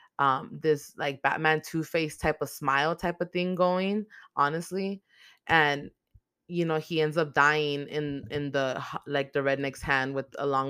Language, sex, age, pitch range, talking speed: English, female, 20-39, 135-155 Hz, 170 wpm